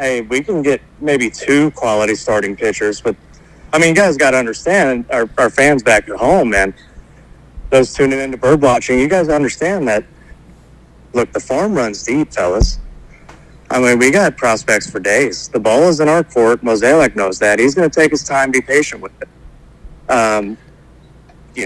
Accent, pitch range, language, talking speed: American, 115-150 Hz, English, 190 wpm